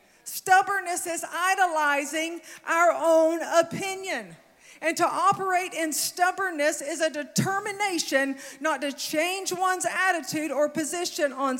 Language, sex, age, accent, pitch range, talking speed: English, female, 40-59, American, 295-360 Hz, 115 wpm